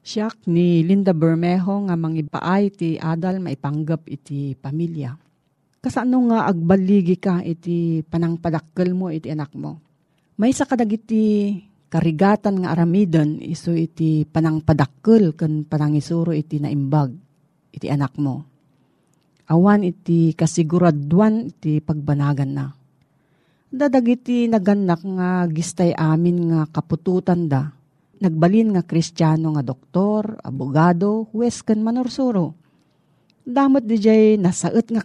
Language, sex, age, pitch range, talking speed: Filipino, female, 40-59, 155-200 Hz, 115 wpm